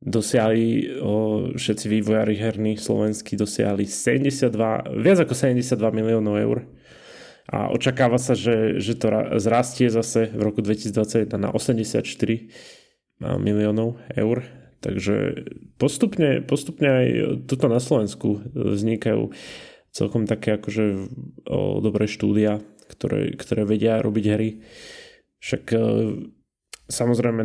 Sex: male